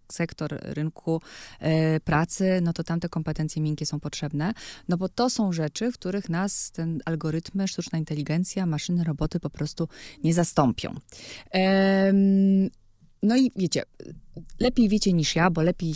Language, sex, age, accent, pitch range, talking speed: Polish, female, 20-39, native, 150-185 Hz, 145 wpm